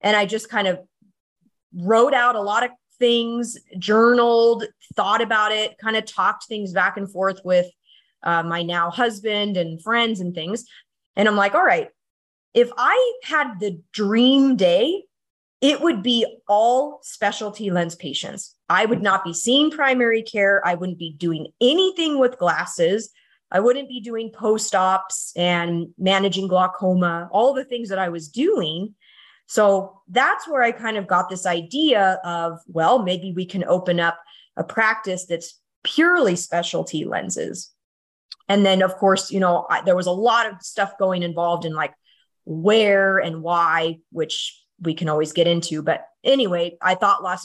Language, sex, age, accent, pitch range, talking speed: English, female, 20-39, American, 175-225 Hz, 165 wpm